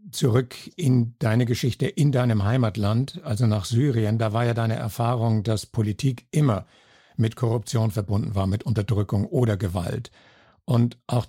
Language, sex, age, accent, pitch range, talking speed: German, male, 60-79, German, 105-125 Hz, 150 wpm